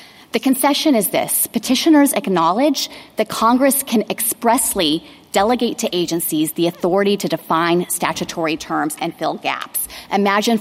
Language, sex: English, female